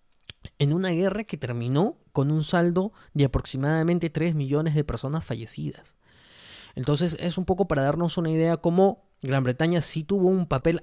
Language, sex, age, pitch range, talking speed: Spanish, male, 20-39, 130-165 Hz, 165 wpm